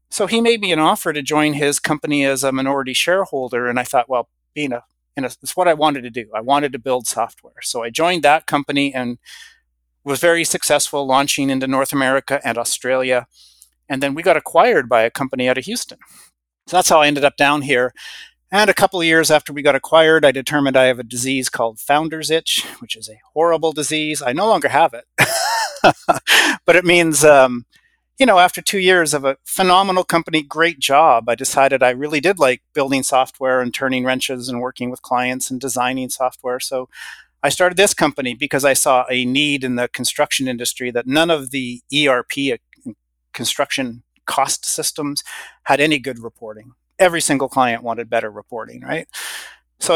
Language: English